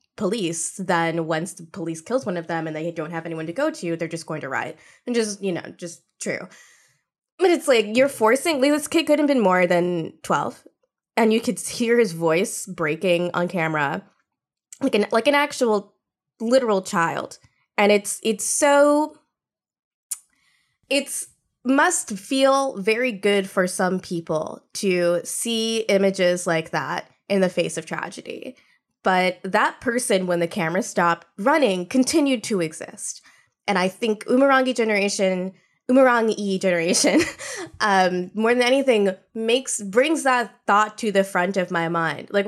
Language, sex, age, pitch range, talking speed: English, female, 20-39, 175-245 Hz, 160 wpm